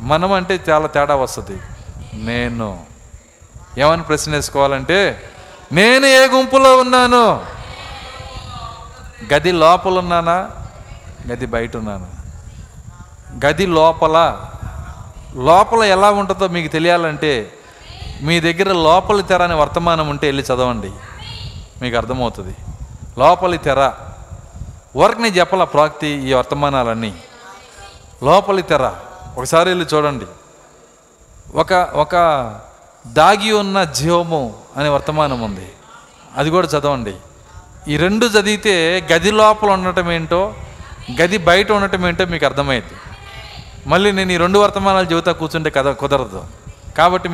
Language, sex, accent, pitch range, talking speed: Telugu, male, native, 120-180 Hz, 100 wpm